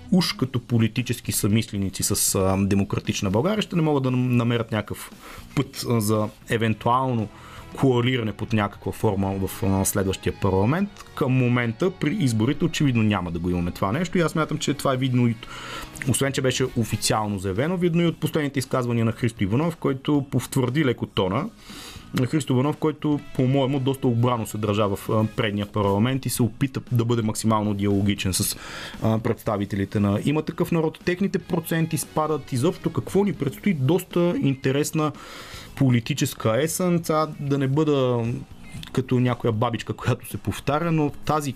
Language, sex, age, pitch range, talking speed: Bulgarian, male, 30-49, 110-145 Hz, 150 wpm